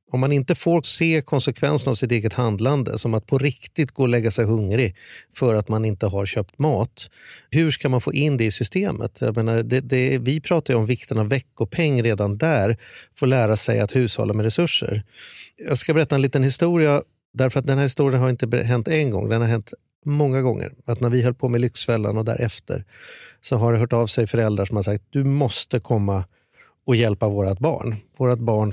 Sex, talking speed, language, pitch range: male, 215 wpm, Swedish, 115-140 Hz